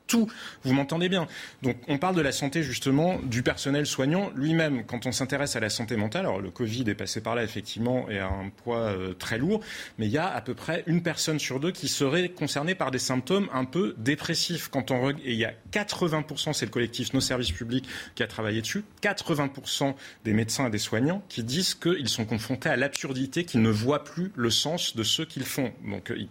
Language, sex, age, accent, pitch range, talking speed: French, male, 30-49, French, 110-155 Hz, 225 wpm